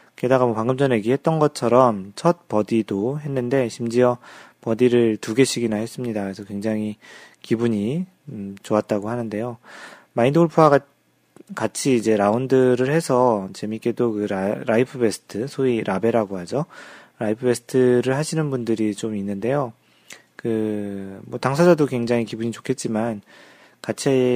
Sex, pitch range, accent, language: male, 110-130 Hz, native, Korean